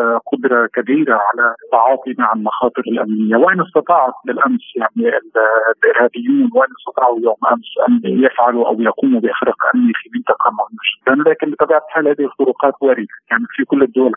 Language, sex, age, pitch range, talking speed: Arabic, male, 50-69, 115-160 Hz, 145 wpm